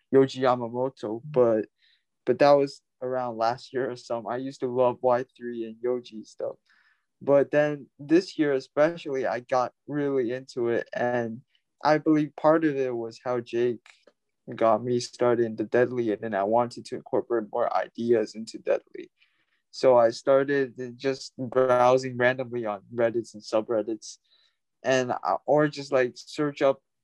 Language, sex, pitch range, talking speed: English, male, 120-145 Hz, 155 wpm